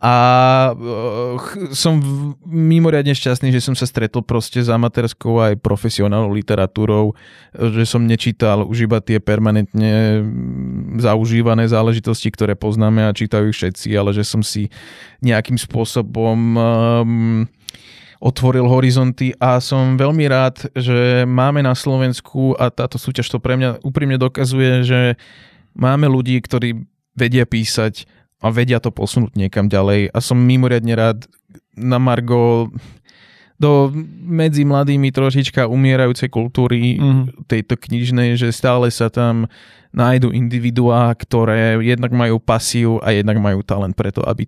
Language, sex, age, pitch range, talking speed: Slovak, male, 20-39, 110-130 Hz, 130 wpm